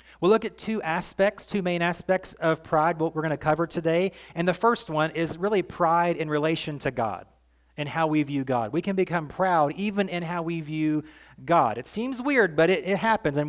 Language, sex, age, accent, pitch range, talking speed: English, male, 30-49, American, 150-185 Hz, 225 wpm